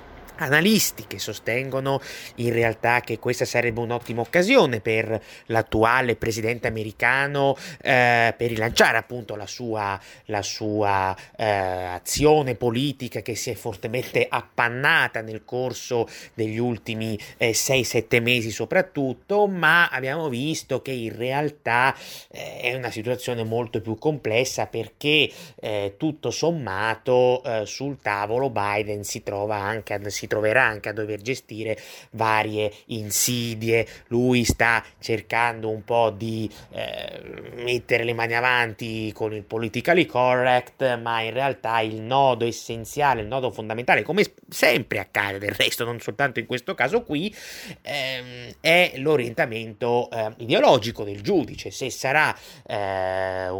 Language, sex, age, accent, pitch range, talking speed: Italian, male, 30-49, native, 110-130 Hz, 125 wpm